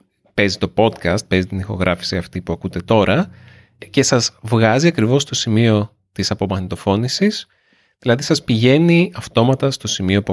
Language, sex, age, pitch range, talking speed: Greek, male, 30-49, 90-110 Hz, 145 wpm